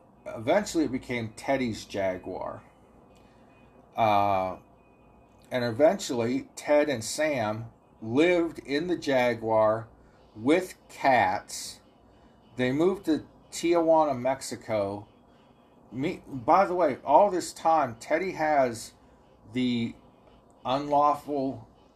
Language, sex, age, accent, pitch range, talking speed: English, male, 40-59, American, 110-140 Hz, 90 wpm